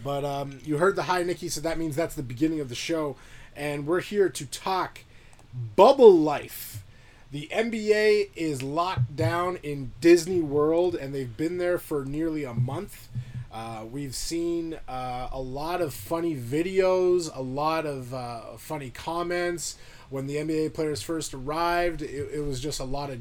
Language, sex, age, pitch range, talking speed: English, male, 20-39, 125-160 Hz, 175 wpm